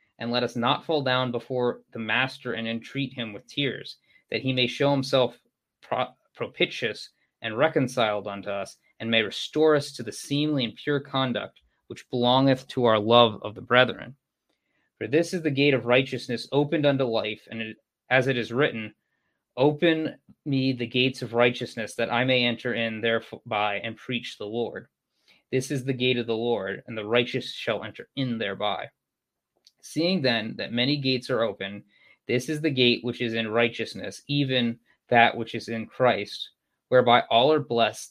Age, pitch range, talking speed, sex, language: 20-39, 115-135 Hz, 180 wpm, male, English